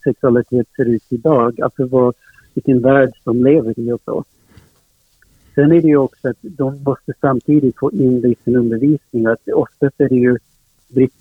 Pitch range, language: 120-140 Hz, Swedish